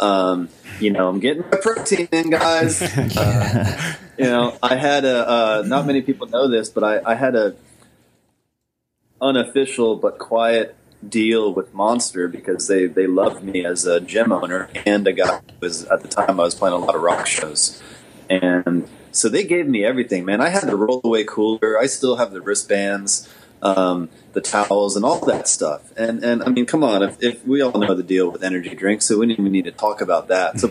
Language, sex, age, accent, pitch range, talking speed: English, male, 30-49, American, 100-135 Hz, 210 wpm